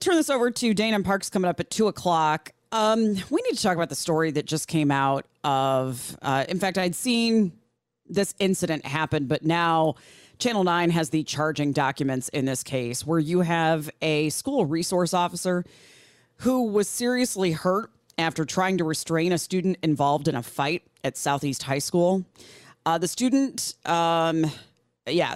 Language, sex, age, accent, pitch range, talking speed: English, female, 30-49, American, 145-185 Hz, 175 wpm